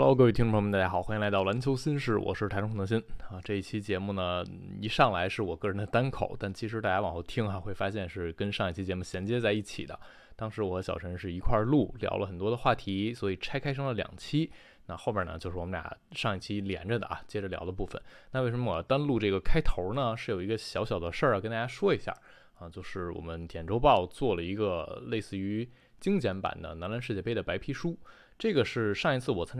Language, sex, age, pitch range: Chinese, male, 20-39, 95-125 Hz